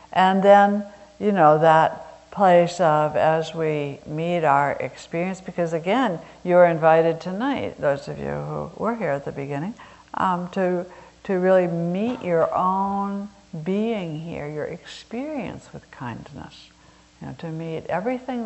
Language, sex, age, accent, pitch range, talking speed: English, female, 60-79, American, 150-195 Hz, 145 wpm